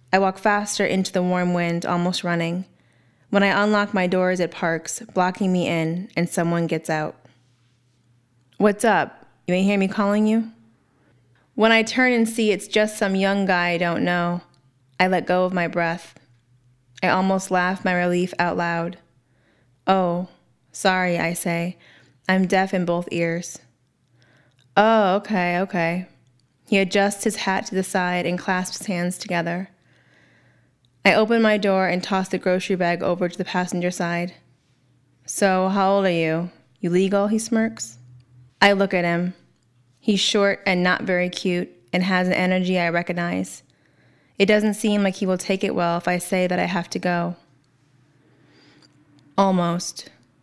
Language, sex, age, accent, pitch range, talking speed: English, female, 20-39, American, 145-190 Hz, 165 wpm